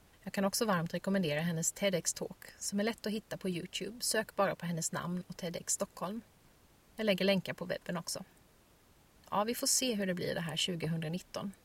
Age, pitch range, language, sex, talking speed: 30-49, 170-210 Hz, Swedish, female, 195 wpm